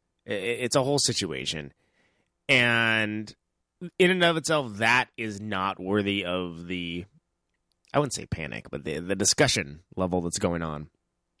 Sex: male